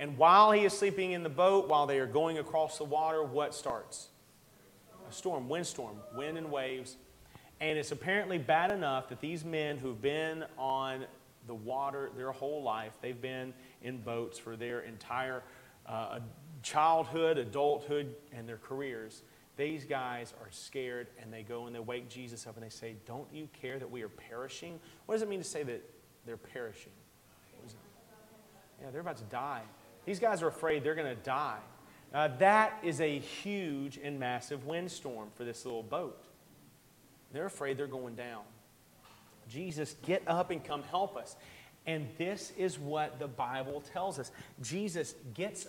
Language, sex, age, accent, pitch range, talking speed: English, male, 30-49, American, 130-160 Hz, 170 wpm